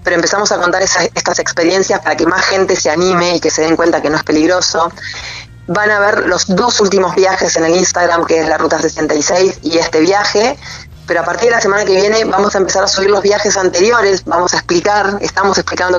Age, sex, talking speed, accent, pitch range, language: 30-49, female, 230 wpm, Argentinian, 175-205 Hz, Spanish